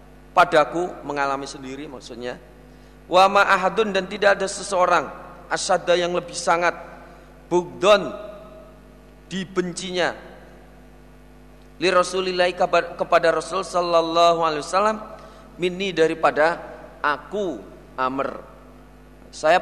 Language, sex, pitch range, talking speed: Indonesian, male, 165-205 Hz, 85 wpm